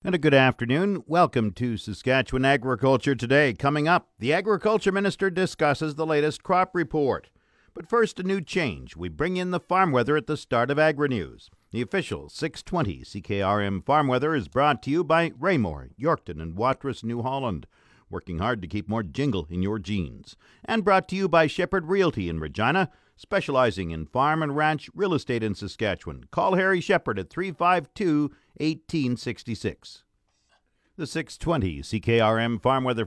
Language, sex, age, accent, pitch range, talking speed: English, male, 50-69, American, 110-160 Hz, 160 wpm